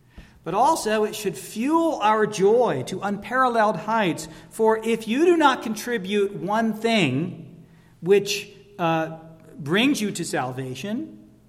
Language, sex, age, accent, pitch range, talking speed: English, male, 40-59, American, 165-235 Hz, 125 wpm